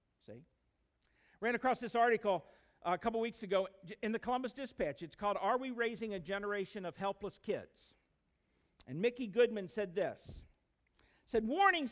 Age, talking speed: 50-69, 155 wpm